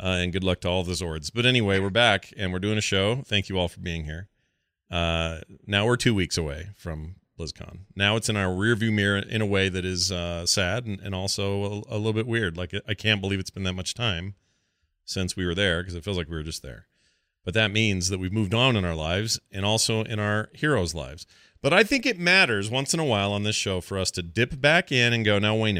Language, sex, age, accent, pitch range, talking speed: English, male, 40-59, American, 90-120 Hz, 260 wpm